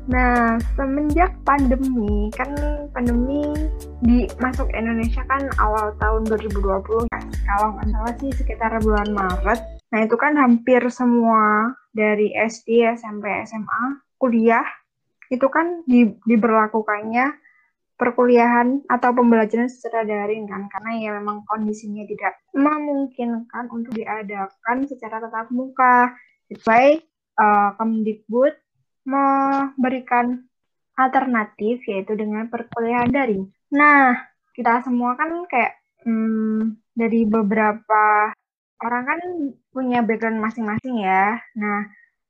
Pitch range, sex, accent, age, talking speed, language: 215-255 Hz, female, native, 20-39, 110 wpm, Indonesian